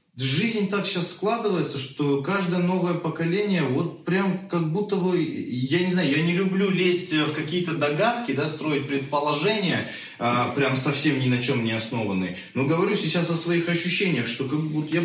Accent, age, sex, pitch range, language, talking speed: native, 20-39, male, 130-170 Hz, Russian, 175 wpm